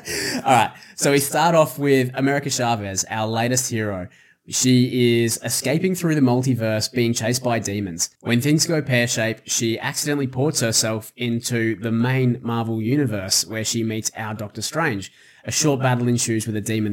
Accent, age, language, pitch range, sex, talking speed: Australian, 20-39, English, 110-140 Hz, male, 170 wpm